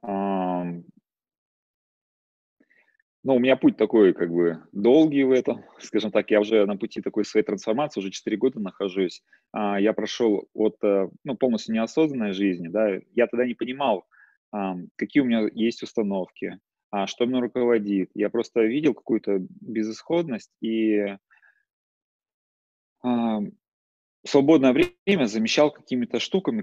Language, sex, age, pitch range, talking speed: Russian, male, 30-49, 105-130 Hz, 125 wpm